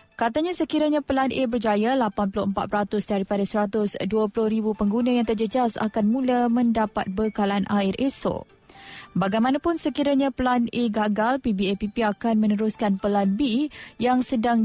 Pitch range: 210-250 Hz